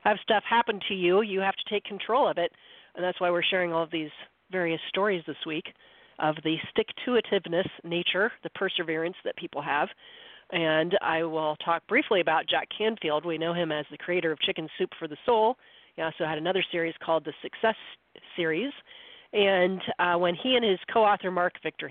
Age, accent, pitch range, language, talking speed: 40-59, American, 175-225 Hz, English, 195 wpm